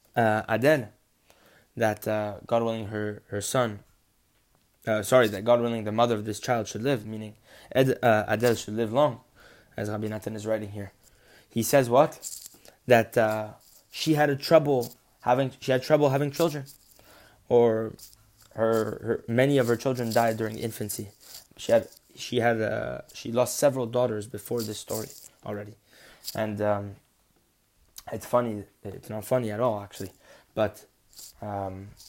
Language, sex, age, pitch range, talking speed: English, male, 20-39, 105-120 Hz, 155 wpm